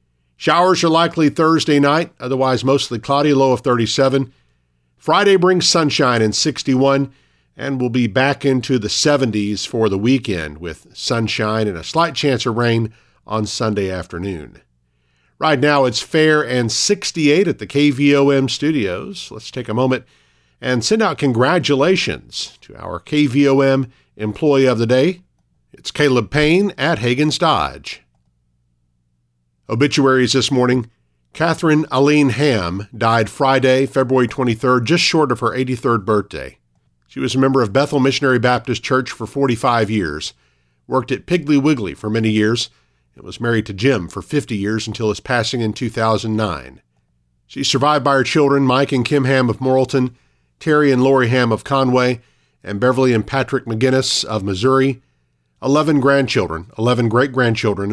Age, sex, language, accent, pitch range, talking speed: 50-69, male, English, American, 105-140 Hz, 150 wpm